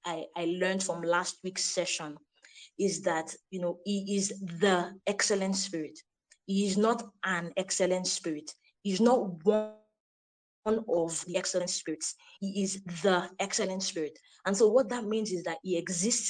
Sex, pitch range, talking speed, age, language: female, 180-220 Hz, 160 wpm, 20-39, English